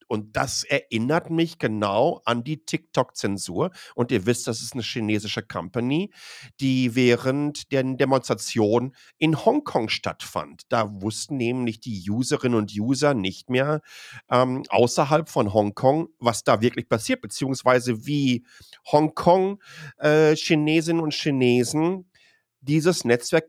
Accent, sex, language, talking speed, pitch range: German, male, German, 125 wpm, 120-155 Hz